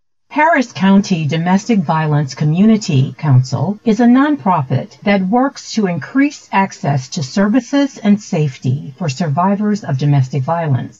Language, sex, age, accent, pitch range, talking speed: English, female, 50-69, American, 140-215 Hz, 125 wpm